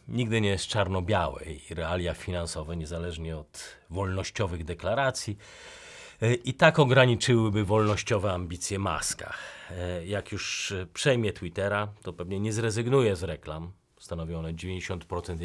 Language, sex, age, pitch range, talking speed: Polish, male, 40-59, 95-120 Hz, 115 wpm